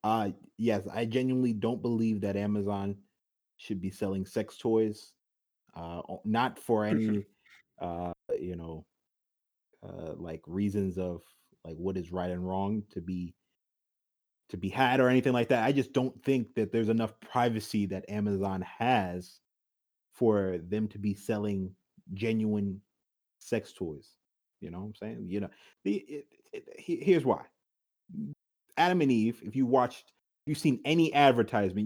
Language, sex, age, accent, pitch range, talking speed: English, male, 30-49, American, 100-130 Hz, 145 wpm